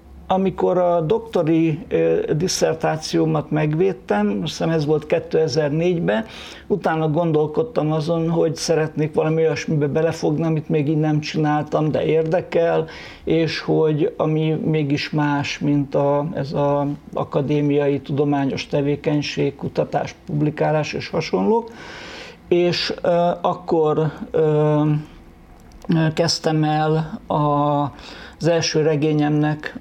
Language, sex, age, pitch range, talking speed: Hungarian, male, 60-79, 150-165 Hz, 100 wpm